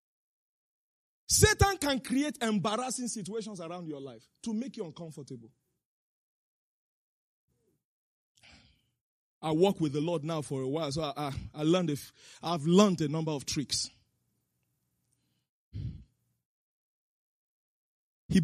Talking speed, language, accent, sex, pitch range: 110 wpm, English, Nigerian, male, 135-210 Hz